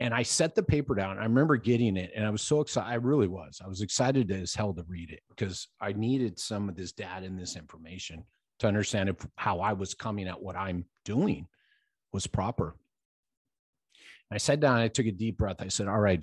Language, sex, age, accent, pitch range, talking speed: English, male, 40-59, American, 90-115 Hz, 230 wpm